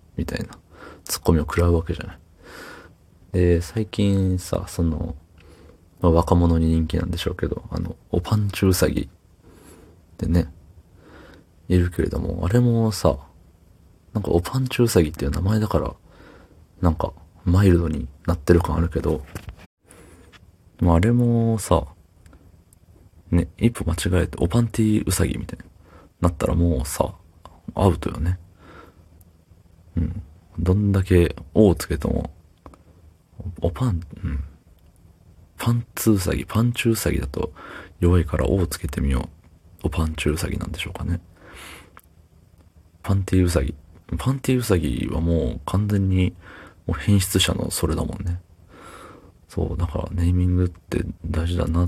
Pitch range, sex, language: 85-95 Hz, male, Japanese